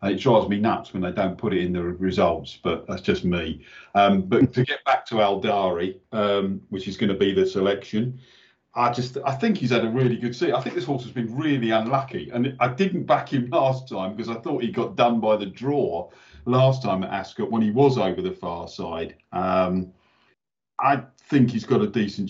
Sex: male